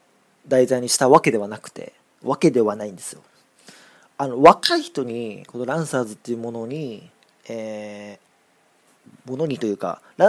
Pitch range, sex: 115-165 Hz, male